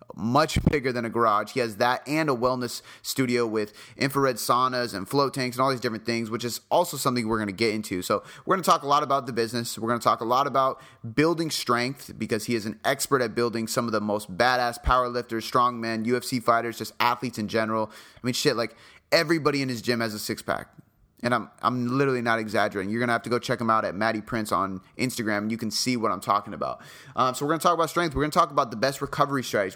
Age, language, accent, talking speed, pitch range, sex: 30-49, English, American, 260 wpm, 115-140 Hz, male